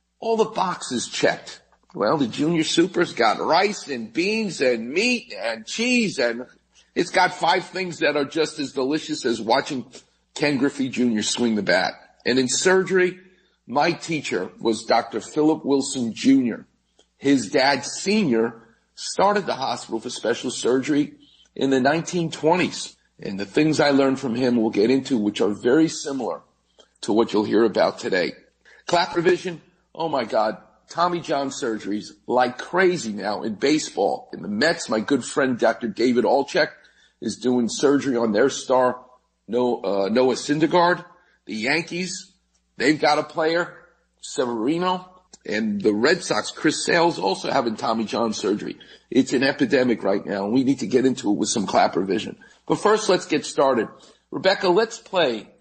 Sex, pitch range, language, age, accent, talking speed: male, 125-185 Hz, English, 50-69, American, 160 wpm